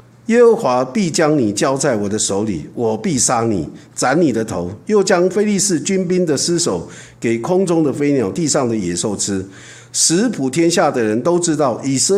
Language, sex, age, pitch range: Chinese, male, 50-69, 115-180 Hz